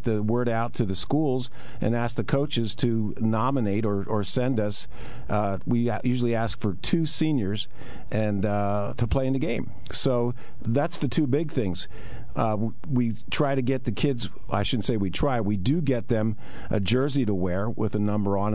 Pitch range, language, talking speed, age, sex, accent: 105-130 Hz, English, 195 wpm, 50-69, male, American